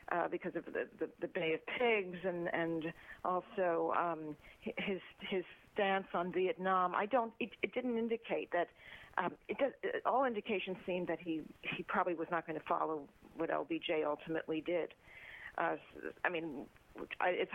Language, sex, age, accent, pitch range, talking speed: English, female, 50-69, American, 170-195 Hz, 160 wpm